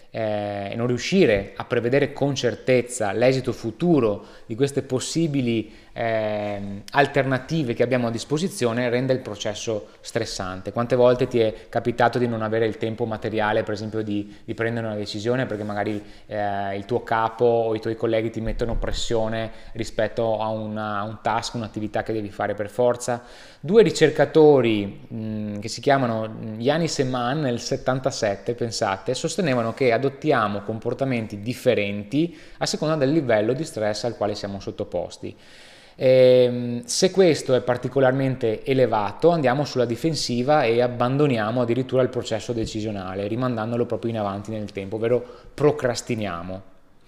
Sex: male